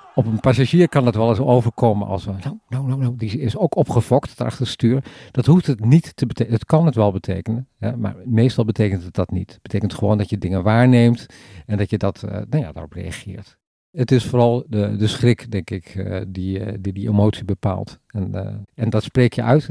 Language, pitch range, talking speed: Dutch, 105-130 Hz, 225 wpm